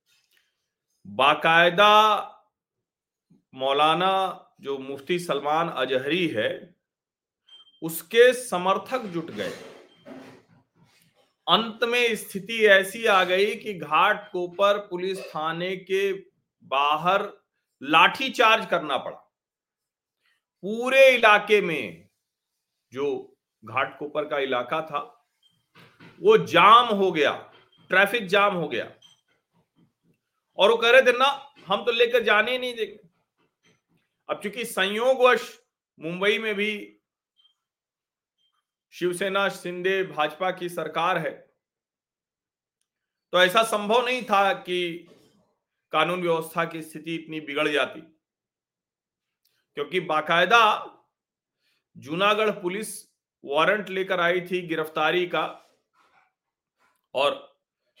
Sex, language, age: male, Hindi, 40-59